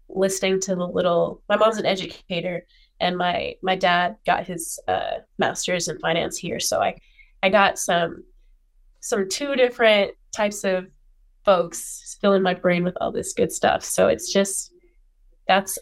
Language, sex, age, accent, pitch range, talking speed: English, female, 20-39, American, 185-245 Hz, 160 wpm